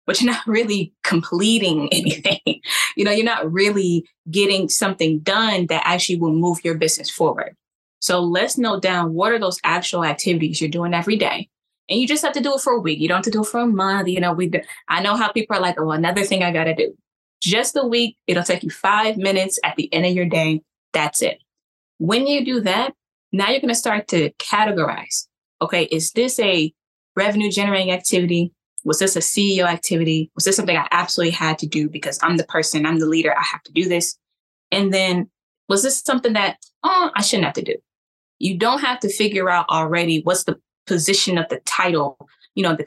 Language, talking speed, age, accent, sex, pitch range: English, 215 wpm, 20-39, American, female, 170-210 Hz